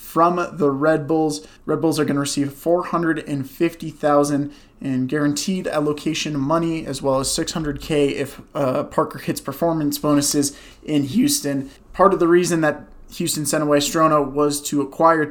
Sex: male